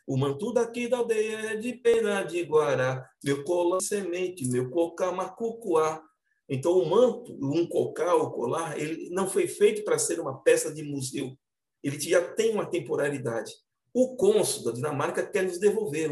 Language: Portuguese